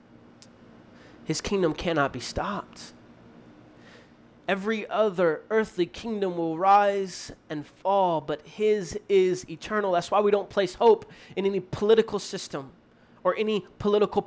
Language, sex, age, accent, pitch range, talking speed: English, male, 30-49, American, 185-220 Hz, 125 wpm